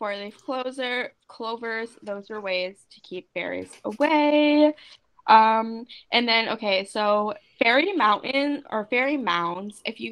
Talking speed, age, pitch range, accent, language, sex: 130 wpm, 10-29, 190-255 Hz, American, English, female